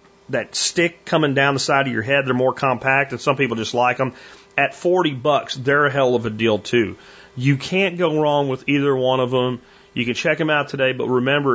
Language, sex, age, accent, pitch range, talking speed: English, male, 40-59, American, 115-145 Hz, 240 wpm